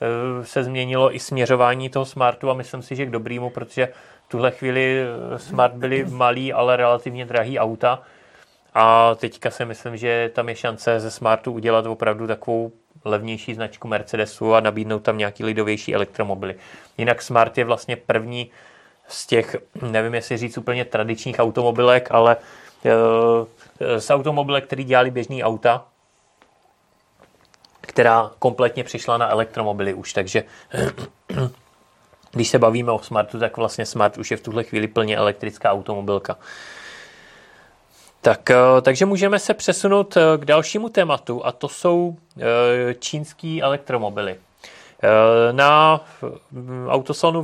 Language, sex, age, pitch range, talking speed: Czech, male, 30-49, 115-135 Hz, 130 wpm